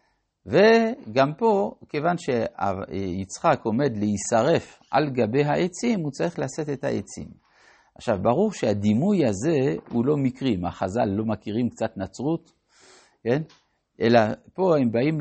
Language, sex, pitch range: Hebrew, male, 105-150 Hz